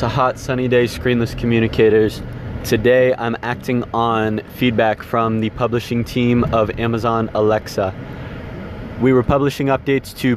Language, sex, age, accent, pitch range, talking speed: English, male, 20-39, American, 115-135 Hz, 135 wpm